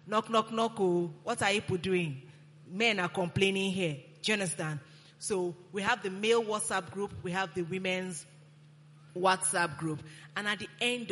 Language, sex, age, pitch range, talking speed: English, female, 30-49, 155-200 Hz, 165 wpm